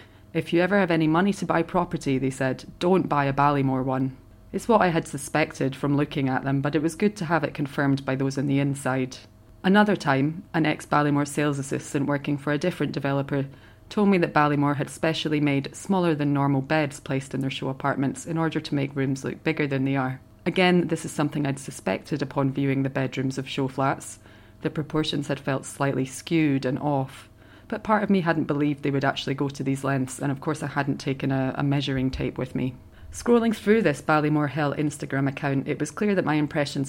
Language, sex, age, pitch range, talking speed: English, female, 30-49, 135-155 Hz, 220 wpm